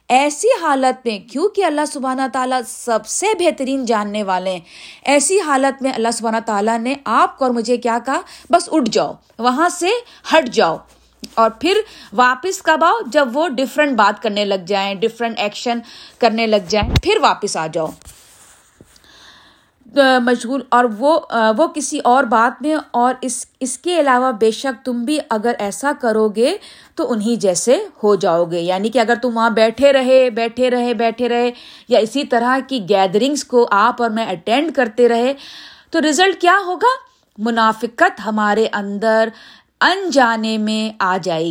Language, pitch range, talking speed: Urdu, 220-285 Hz, 165 wpm